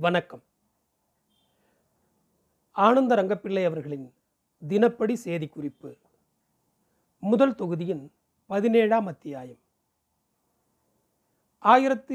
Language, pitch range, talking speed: Tamil, 175-230 Hz, 55 wpm